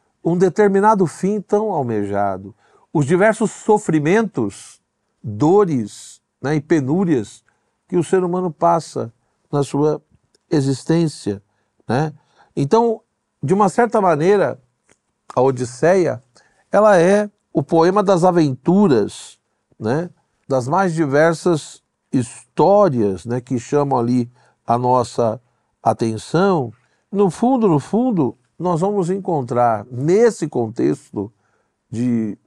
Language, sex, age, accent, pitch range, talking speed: Portuguese, male, 60-79, Brazilian, 120-185 Hz, 100 wpm